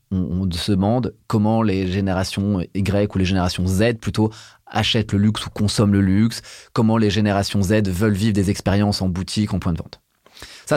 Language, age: French, 30-49